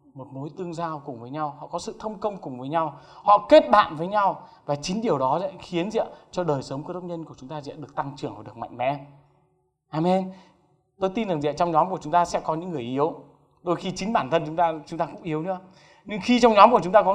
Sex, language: male, Vietnamese